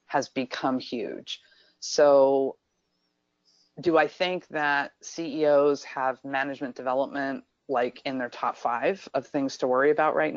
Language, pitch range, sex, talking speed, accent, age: English, 130-150 Hz, female, 135 wpm, American, 30-49